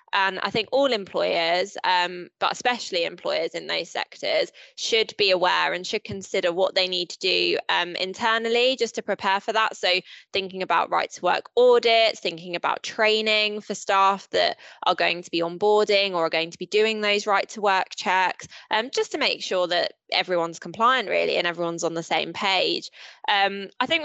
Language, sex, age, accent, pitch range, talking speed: English, female, 20-39, British, 180-245 Hz, 190 wpm